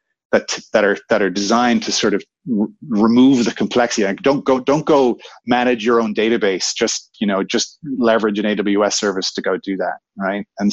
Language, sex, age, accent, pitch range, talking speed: English, male, 30-49, Canadian, 100-120 Hz, 200 wpm